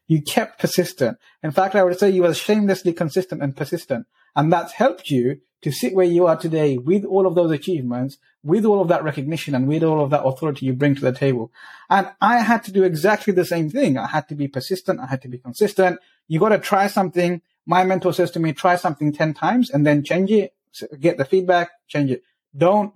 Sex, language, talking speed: male, English, 230 wpm